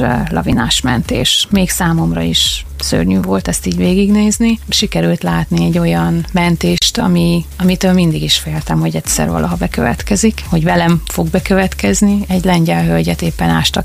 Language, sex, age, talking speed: Hungarian, female, 30-49, 145 wpm